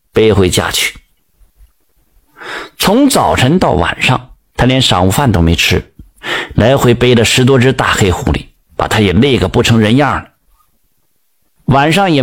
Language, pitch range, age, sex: Chinese, 110-155 Hz, 50-69, male